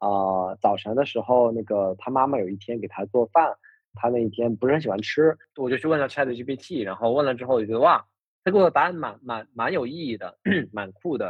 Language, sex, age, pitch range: Chinese, male, 20-39, 110-145 Hz